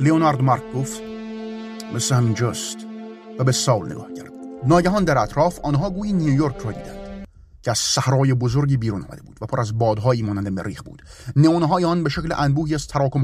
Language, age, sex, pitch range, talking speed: Persian, 30-49, male, 100-155 Hz, 160 wpm